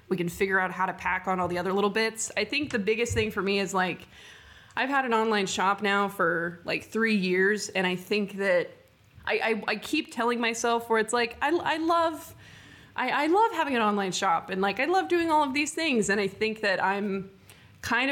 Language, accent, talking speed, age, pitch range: English, American, 230 wpm, 20-39, 190-230 Hz